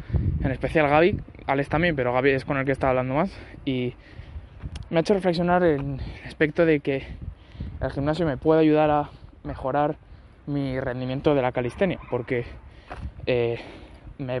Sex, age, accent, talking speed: male, 20-39, Spanish, 160 wpm